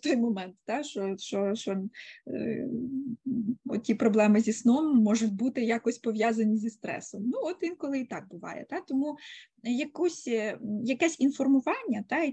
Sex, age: female, 20-39